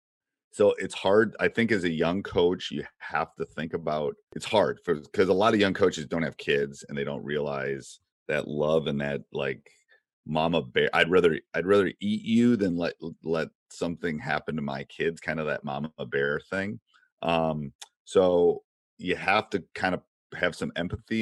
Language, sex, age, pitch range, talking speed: English, male, 30-49, 75-95 Hz, 185 wpm